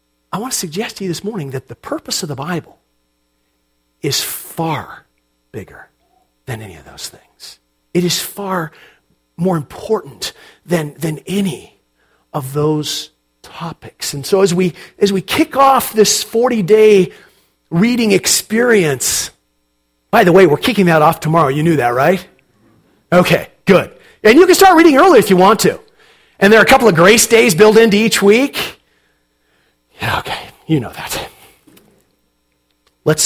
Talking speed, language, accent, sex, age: 155 wpm, English, American, male, 40-59